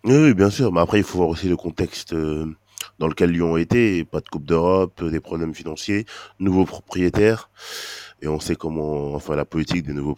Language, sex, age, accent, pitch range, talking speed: French, male, 20-39, French, 80-100 Hz, 205 wpm